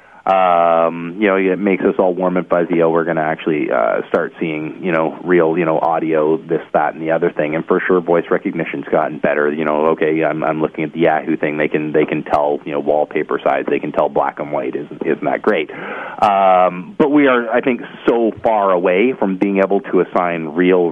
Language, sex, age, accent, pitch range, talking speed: English, male, 30-49, American, 80-95 Hz, 230 wpm